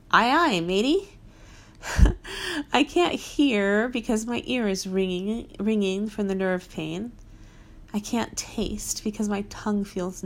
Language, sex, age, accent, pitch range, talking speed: English, female, 30-49, American, 165-215 Hz, 135 wpm